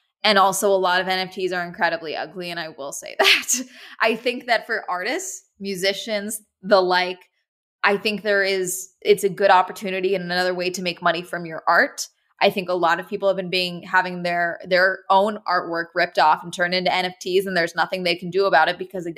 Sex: female